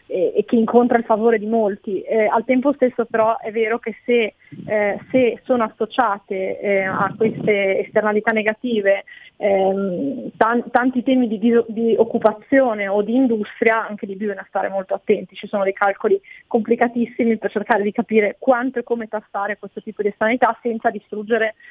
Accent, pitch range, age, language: native, 205-240 Hz, 20-39, Italian